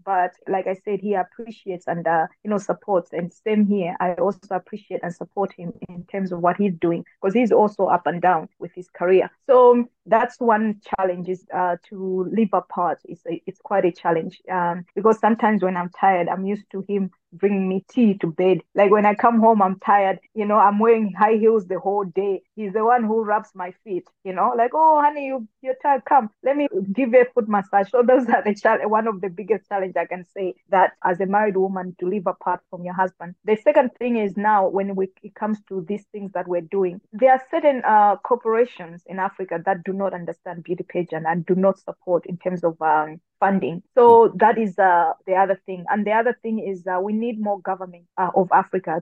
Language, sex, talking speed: English, female, 230 wpm